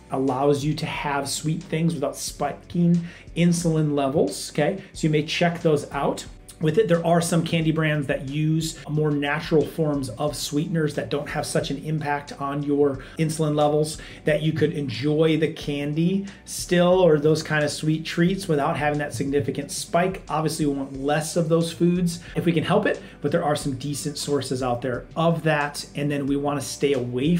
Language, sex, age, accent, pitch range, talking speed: English, male, 30-49, American, 140-165 Hz, 190 wpm